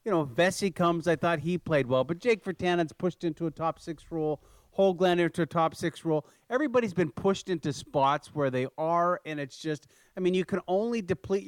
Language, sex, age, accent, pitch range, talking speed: English, male, 40-59, American, 135-180 Hz, 210 wpm